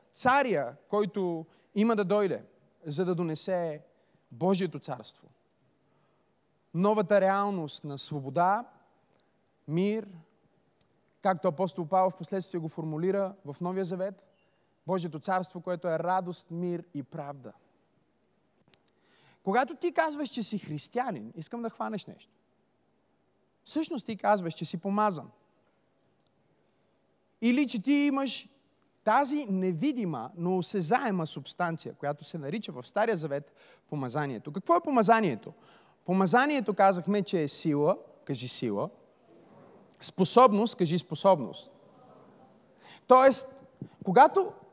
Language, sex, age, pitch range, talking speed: Bulgarian, male, 30-49, 170-240 Hz, 105 wpm